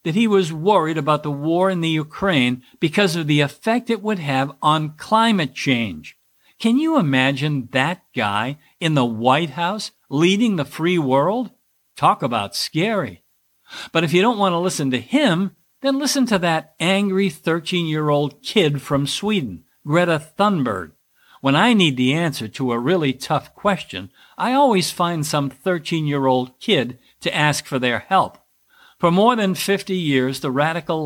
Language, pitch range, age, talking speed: English, 140-190 Hz, 50-69, 160 wpm